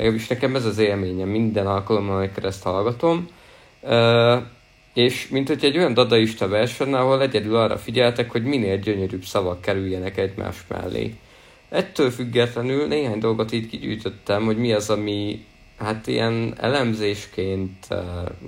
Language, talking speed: Hungarian, 140 wpm